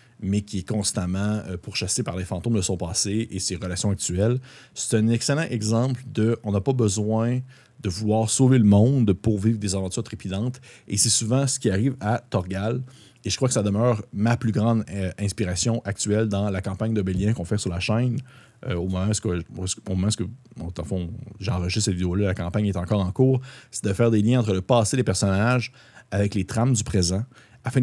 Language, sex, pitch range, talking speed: French, male, 100-125 Hz, 200 wpm